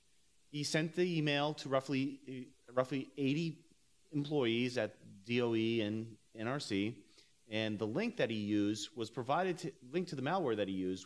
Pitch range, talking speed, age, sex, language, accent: 110-145 Hz, 165 wpm, 30-49, male, English, American